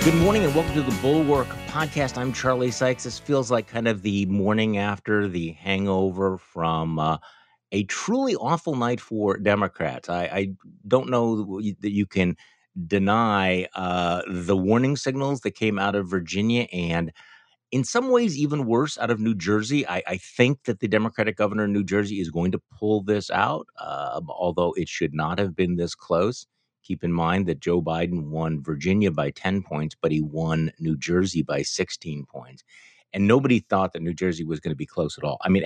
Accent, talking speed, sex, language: American, 195 wpm, male, English